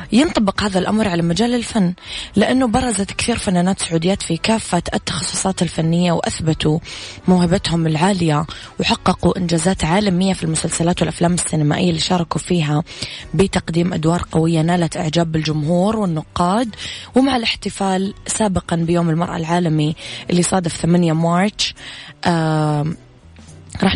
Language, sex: English, female